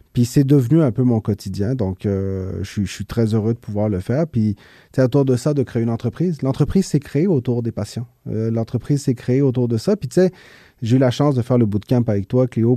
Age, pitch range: 30-49, 110-140 Hz